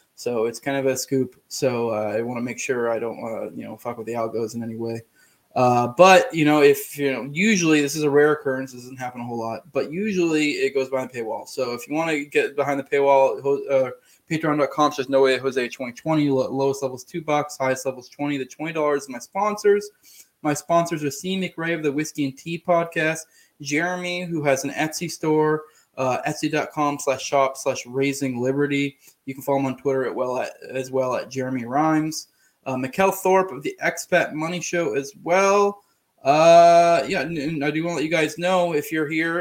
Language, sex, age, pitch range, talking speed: English, male, 20-39, 135-160 Hz, 220 wpm